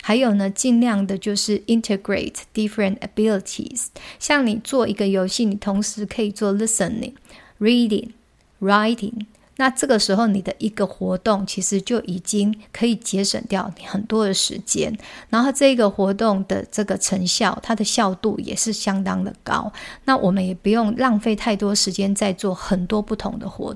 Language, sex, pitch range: Chinese, female, 195-230 Hz